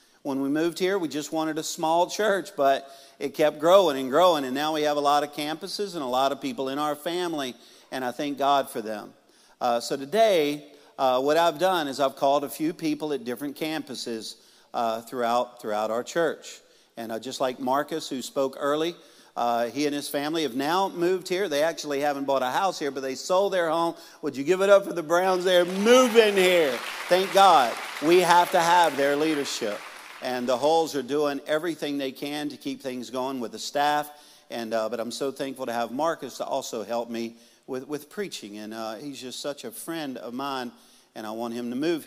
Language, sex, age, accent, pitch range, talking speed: English, male, 50-69, American, 130-175 Hz, 220 wpm